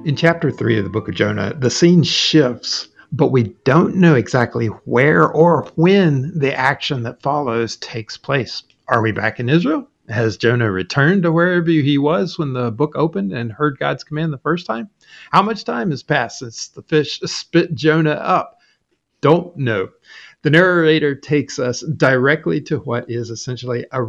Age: 50-69